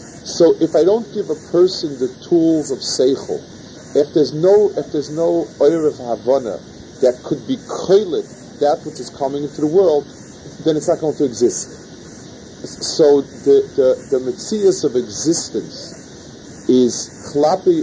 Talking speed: 150 wpm